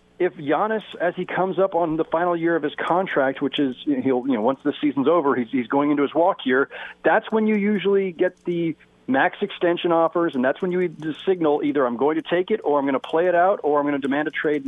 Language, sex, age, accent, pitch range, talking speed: English, male, 40-59, American, 145-200 Hz, 260 wpm